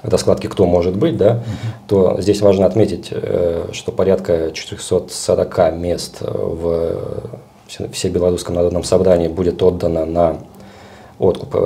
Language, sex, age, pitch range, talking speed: Russian, male, 40-59, 85-105 Hz, 115 wpm